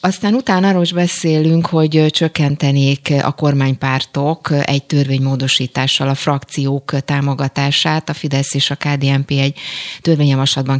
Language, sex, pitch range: Hungarian, female, 135-155 Hz